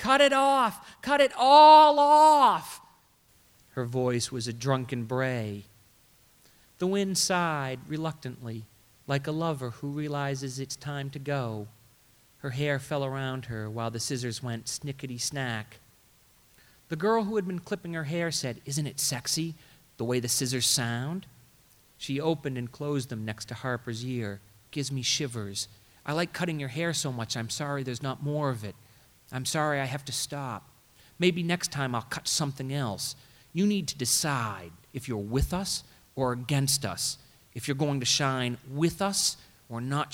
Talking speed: 165 wpm